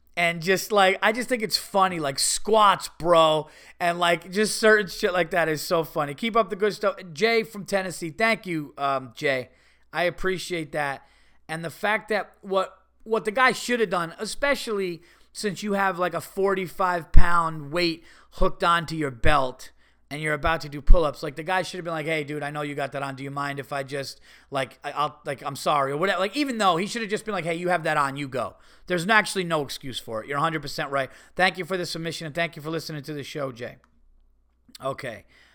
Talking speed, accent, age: 230 wpm, American, 30-49